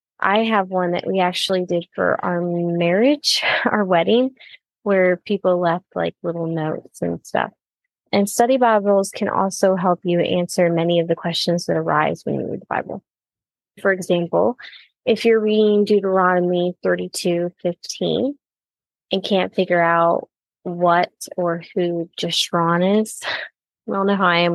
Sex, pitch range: female, 170-200 Hz